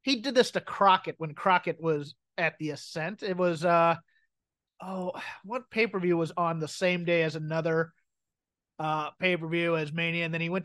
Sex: male